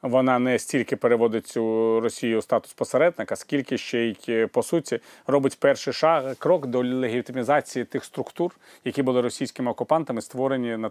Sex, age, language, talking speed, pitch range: male, 30-49, Ukrainian, 155 wpm, 120-155 Hz